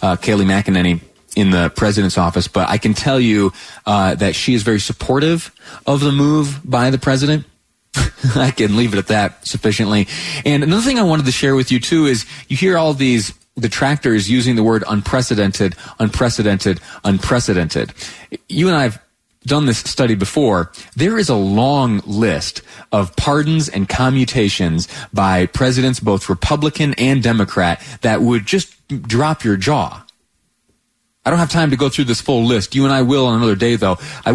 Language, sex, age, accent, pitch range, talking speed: English, male, 30-49, American, 100-140 Hz, 175 wpm